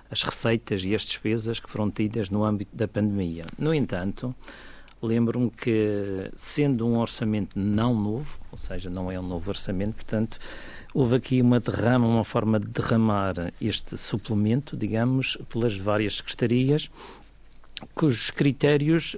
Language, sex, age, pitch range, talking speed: Portuguese, male, 50-69, 100-120 Hz, 140 wpm